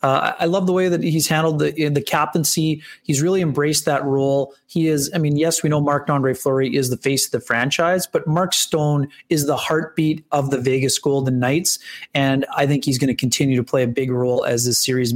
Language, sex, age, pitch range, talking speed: English, male, 30-49, 130-155 Hz, 230 wpm